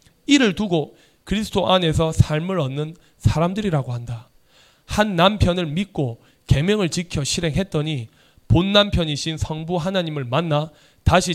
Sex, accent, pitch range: male, native, 145-205 Hz